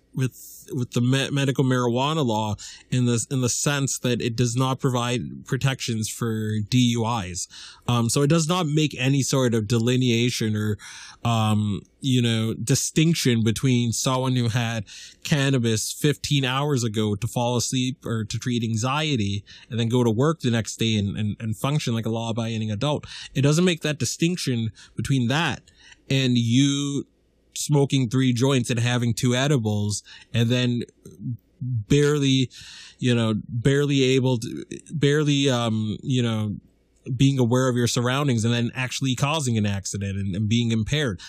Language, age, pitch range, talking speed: English, 20-39, 115-135 Hz, 155 wpm